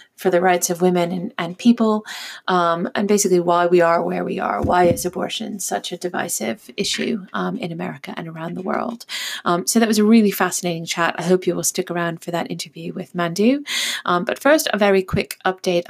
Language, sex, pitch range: English, female, 175-205 Hz